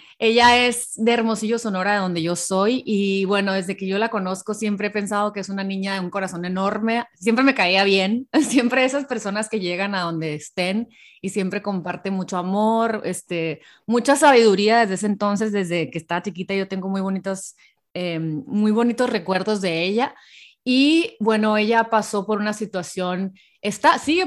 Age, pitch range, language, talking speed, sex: 30-49, 185-220 Hz, Spanish, 180 wpm, female